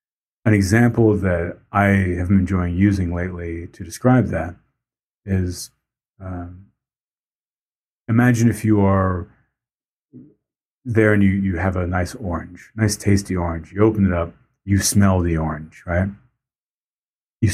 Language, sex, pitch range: English, male, 90-110 Hz